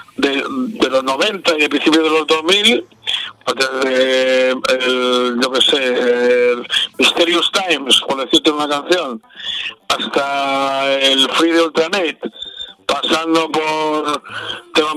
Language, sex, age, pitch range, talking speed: Spanish, male, 50-69, 135-175 Hz, 125 wpm